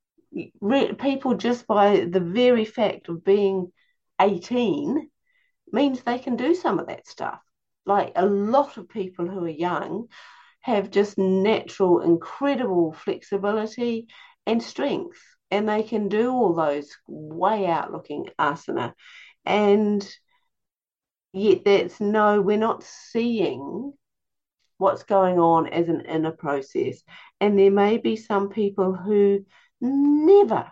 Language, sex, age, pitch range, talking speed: English, female, 50-69, 175-240 Hz, 125 wpm